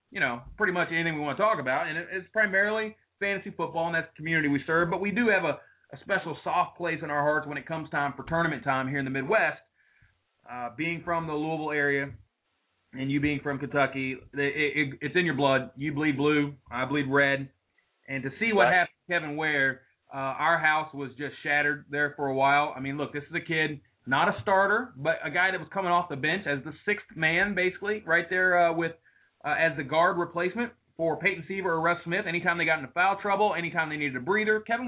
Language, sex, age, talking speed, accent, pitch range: English, male, 30-49, 230 wpm, American, 145-195 Hz